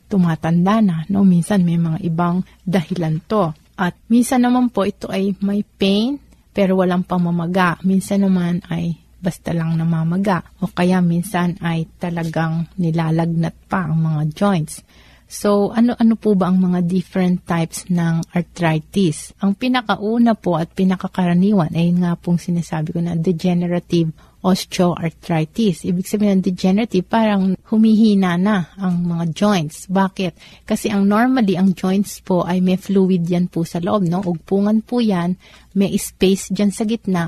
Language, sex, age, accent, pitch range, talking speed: Filipino, female, 30-49, native, 175-200 Hz, 150 wpm